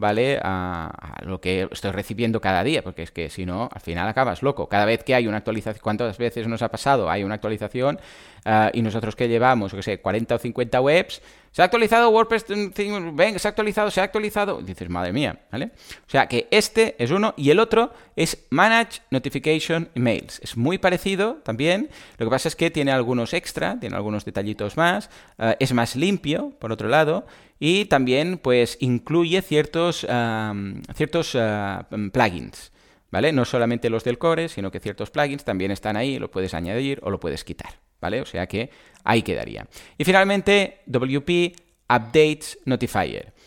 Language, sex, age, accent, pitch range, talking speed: Spanish, male, 30-49, Spanish, 105-160 Hz, 180 wpm